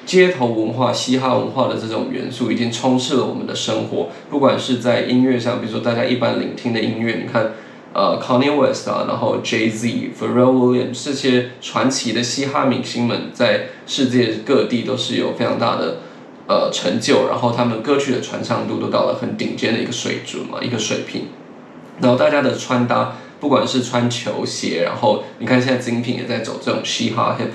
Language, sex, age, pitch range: Chinese, male, 20-39, 120-140 Hz